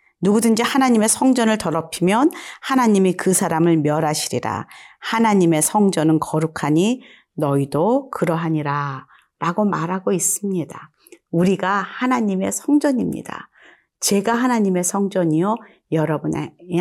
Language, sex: Korean, female